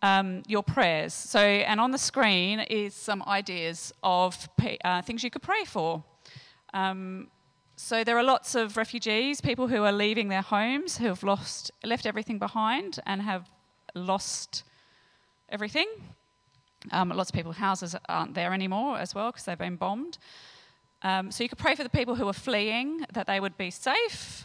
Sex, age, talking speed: female, 40-59, 175 wpm